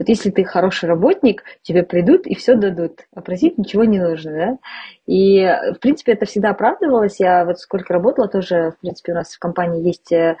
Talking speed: 190 wpm